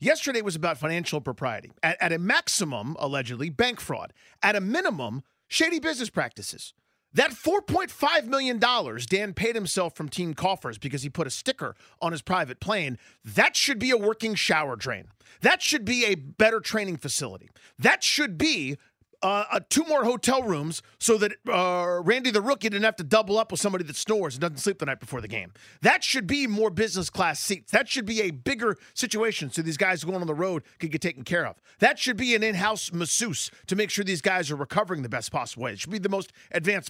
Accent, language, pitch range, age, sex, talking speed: American, English, 165-235 Hz, 40-59, male, 210 wpm